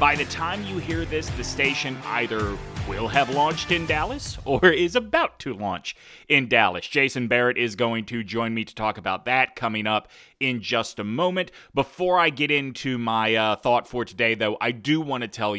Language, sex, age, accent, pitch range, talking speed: English, male, 30-49, American, 110-130 Hz, 205 wpm